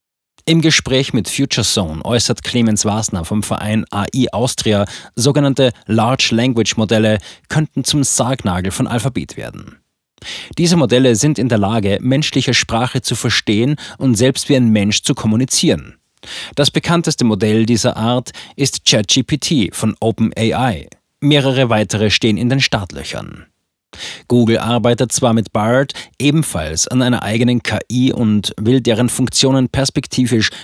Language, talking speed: German, 130 wpm